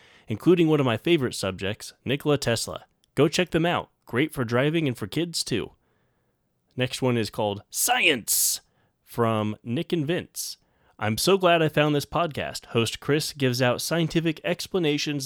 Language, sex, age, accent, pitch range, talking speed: English, male, 30-49, American, 110-145 Hz, 160 wpm